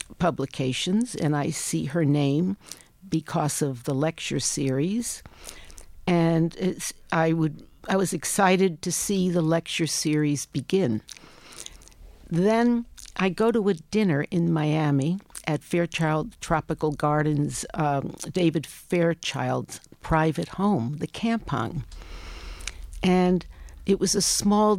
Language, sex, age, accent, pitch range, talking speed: English, female, 60-79, American, 150-190 Hz, 115 wpm